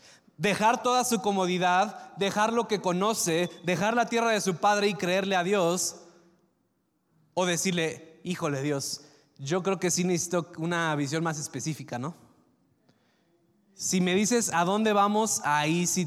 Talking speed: 150 wpm